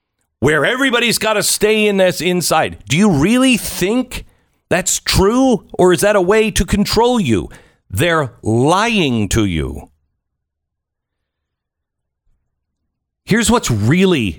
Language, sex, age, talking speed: English, male, 50-69, 120 wpm